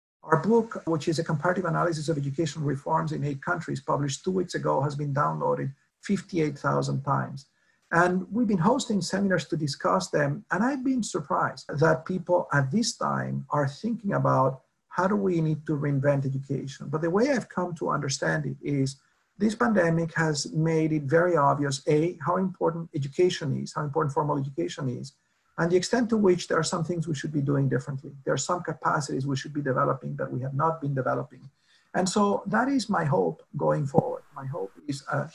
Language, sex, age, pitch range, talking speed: English, male, 50-69, 145-180 Hz, 195 wpm